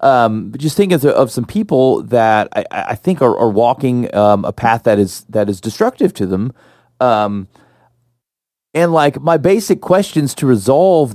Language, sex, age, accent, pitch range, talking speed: English, male, 30-49, American, 115-160 Hz, 180 wpm